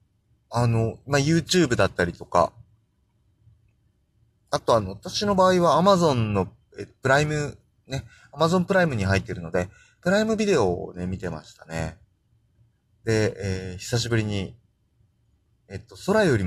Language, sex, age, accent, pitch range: Japanese, male, 30-49, native, 100-120 Hz